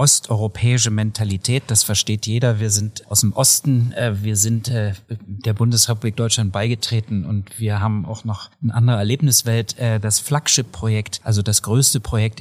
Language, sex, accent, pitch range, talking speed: German, male, German, 105-115 Hz, 145 wpm